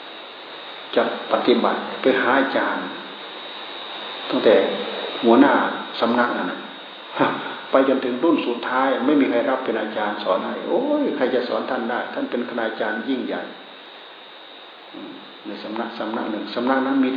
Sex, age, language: male, 60-79, Thai